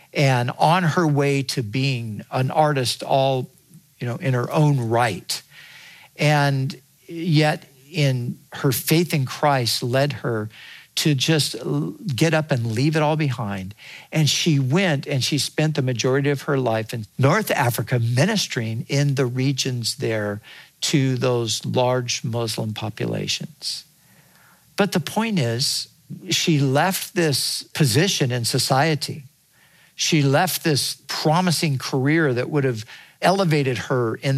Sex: male